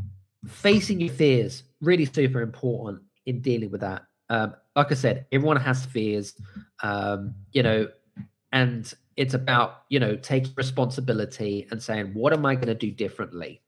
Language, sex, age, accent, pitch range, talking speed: English, male, 20-39, British, 110-140 Hz, 160 wpm